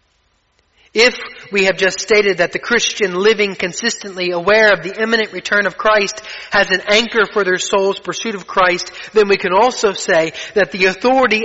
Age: 30-49